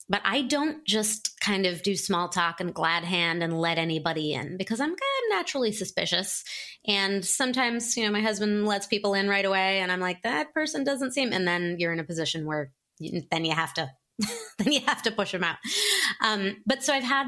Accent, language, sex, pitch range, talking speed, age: American, English, female, 170-230 Hz, 220 wpm, 30-49